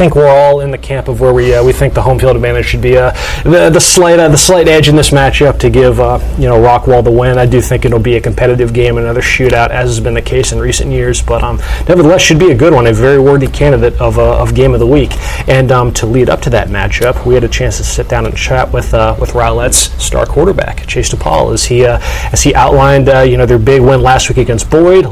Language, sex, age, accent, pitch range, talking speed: English, male, 30-49, American, 125-160 Hz, 275 wpm